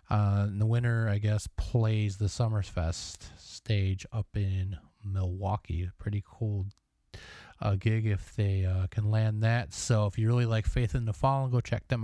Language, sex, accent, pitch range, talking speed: English, male, American, 100-120 Hz, 180 wpm